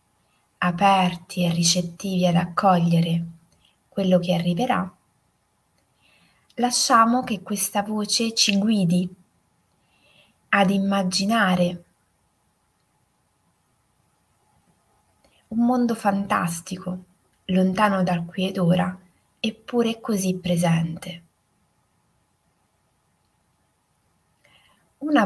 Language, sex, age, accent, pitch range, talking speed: Italian, female, 20-39, native, 170-215 Hz, 65 wpm